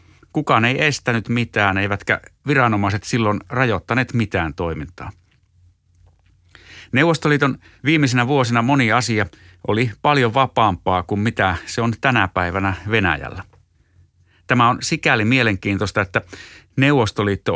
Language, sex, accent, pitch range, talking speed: Finnish, male, native, 95-115 Hz, 105 wpm